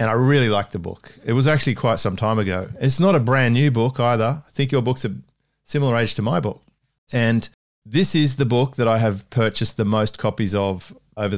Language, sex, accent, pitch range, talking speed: English, male, Australian, 100-125 Hz, 230 wpm